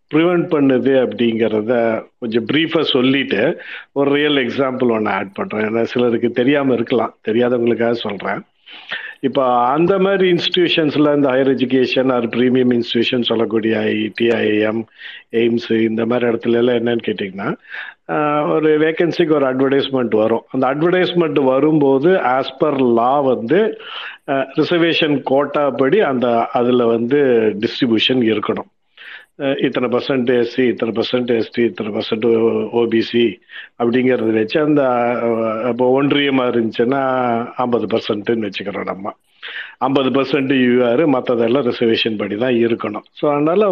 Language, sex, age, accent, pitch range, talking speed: Tamil, male, 50-69, native, 115-145 Hz, 115 wpm